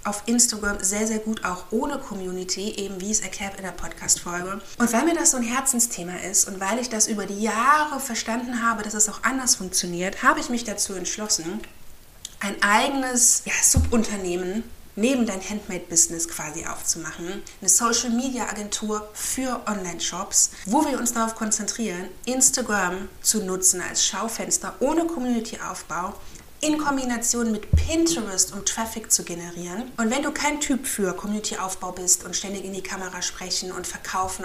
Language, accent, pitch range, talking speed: German, German, 185-230 Hz, 160 wpm